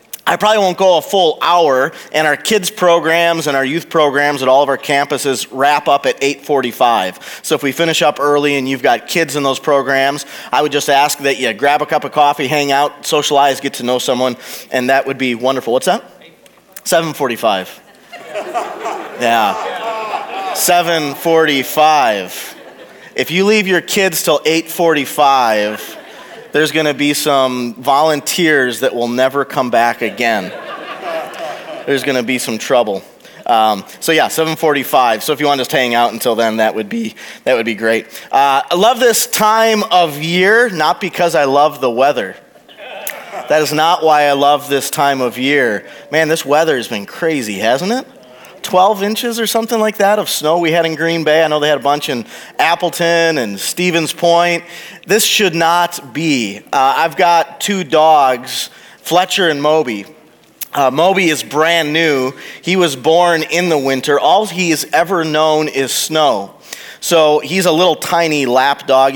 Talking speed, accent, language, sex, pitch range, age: 175 wpm, American, English, male, 135-170 Hz, 30-49